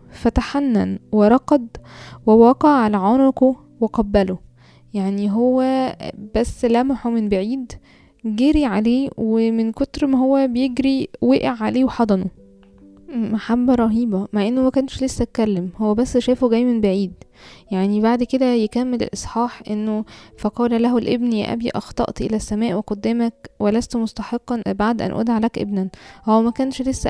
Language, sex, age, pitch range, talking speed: Arabic, female, 10-29, 215-245 Hz, 135 wpm